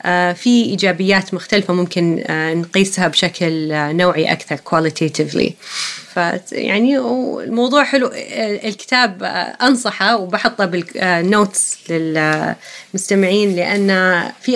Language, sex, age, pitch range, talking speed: Arabic, female, 30-49, 175-235 Hz, 80 wpm